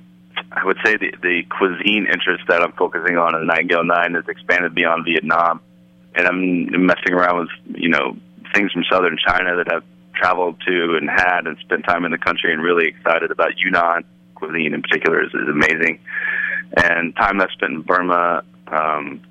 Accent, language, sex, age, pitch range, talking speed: American, English, male, 30-49, 75-90 Hz, 185 wpm